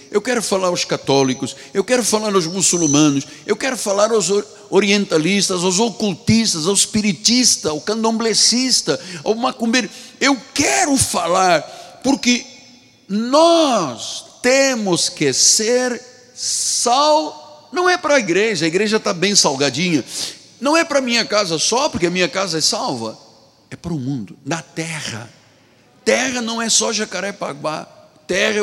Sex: male